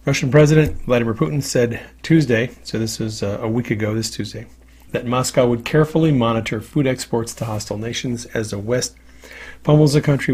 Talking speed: 175 wpm